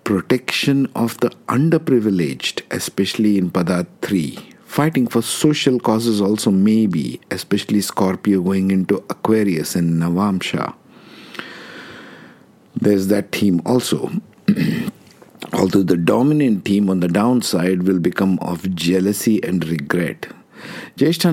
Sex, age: male, 50-69